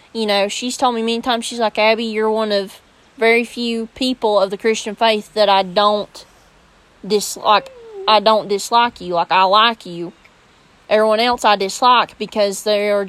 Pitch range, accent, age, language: 195-230 Hz, American, 20-39, English